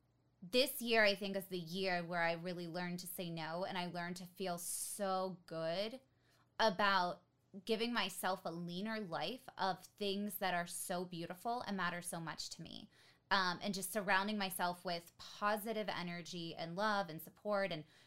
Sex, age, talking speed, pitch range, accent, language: female, 20-39, 175 wpm, 175-215 Hz, American, English